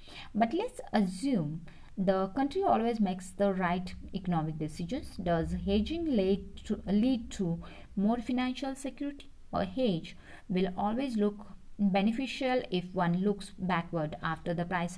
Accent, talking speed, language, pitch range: Indian, 130 wpm, English, 170-215 Hz